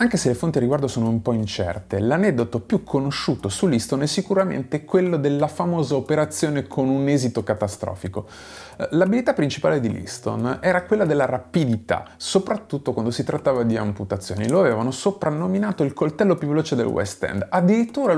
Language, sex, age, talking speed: Italian, male, 30-49, 165 wpm